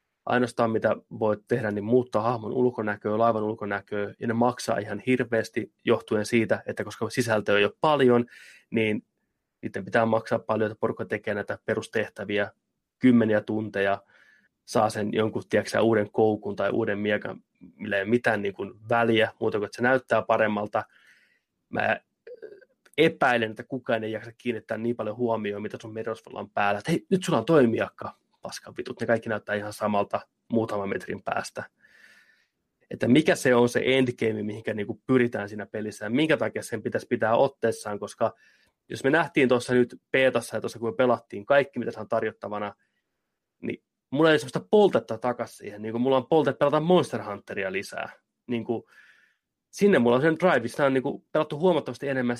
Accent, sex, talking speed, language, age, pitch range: native, male, 170 wpm, Finnish, 20-39, 110-125 Hz